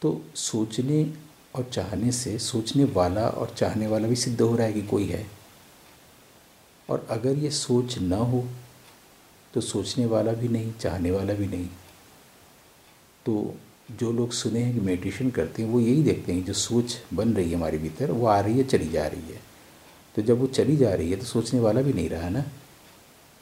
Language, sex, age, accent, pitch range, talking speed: English, male, 50-69, Indian, 100-125 Hz, 180 wpm